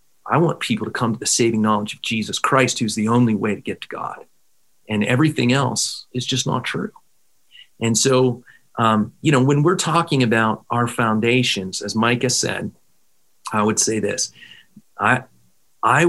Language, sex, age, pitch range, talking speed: English, male, 40-59, 110-140 Hz, 170 wpm